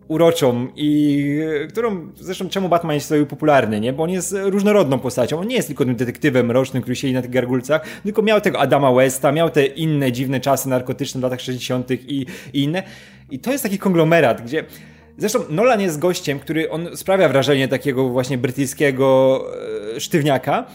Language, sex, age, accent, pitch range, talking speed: Polish, male, 20-39, native, 135-180 Hz, 180 wpm